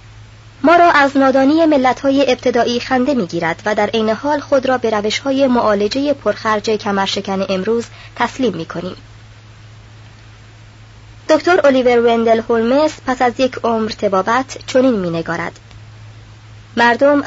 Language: Persian